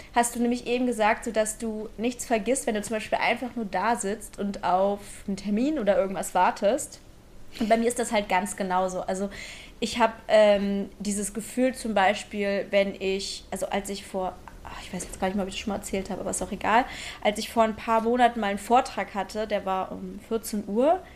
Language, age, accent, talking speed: German, 20-39, German, 220 wpm